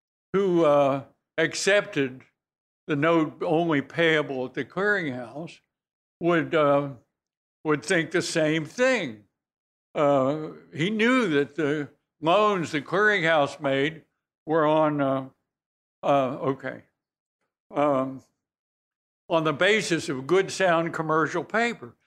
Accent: American